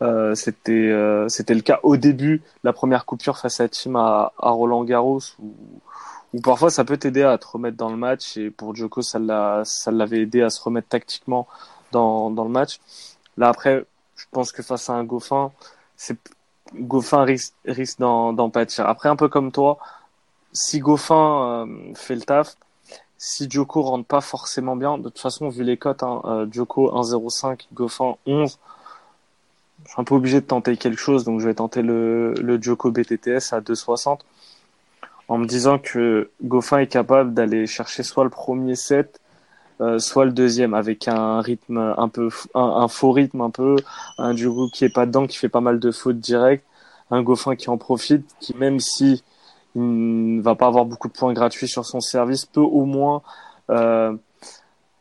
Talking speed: 190 wpm